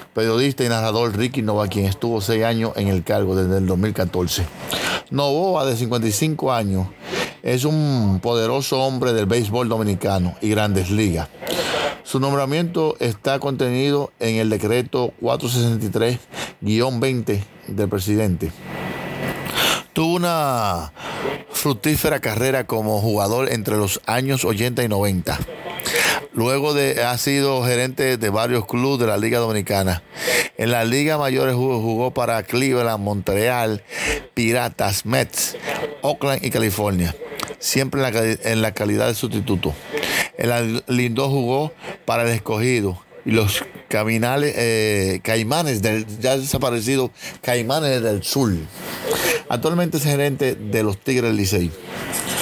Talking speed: 125 wpm